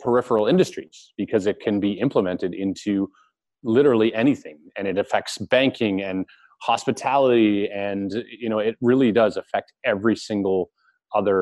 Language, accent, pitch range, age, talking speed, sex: English, American, 95-120 Hz, 30-49, 135 wpm, male